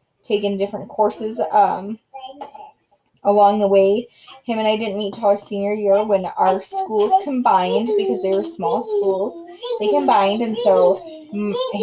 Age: 20-39